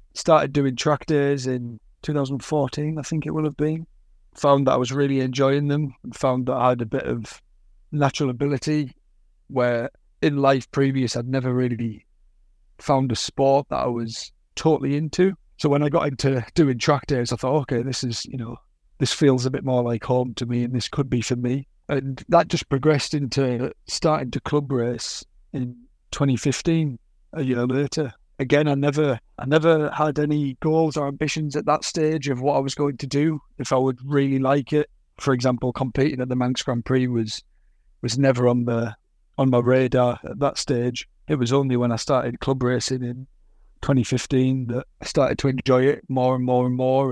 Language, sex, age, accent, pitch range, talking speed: English, male, 30-49, British, 125-145 Hz, 195 wpm